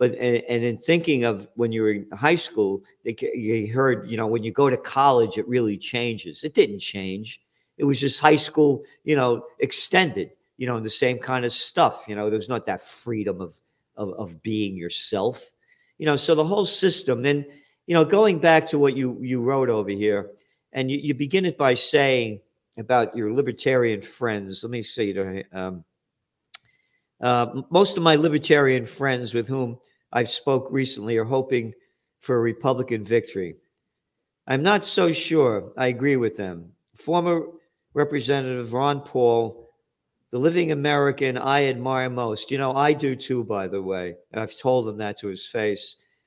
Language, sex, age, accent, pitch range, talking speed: English, male, 50-69, American, 115-145 Hz, 175 wpm